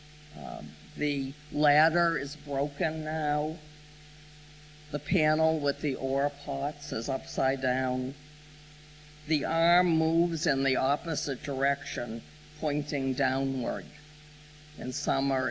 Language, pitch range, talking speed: English, 125-150 Hz, 100 wpm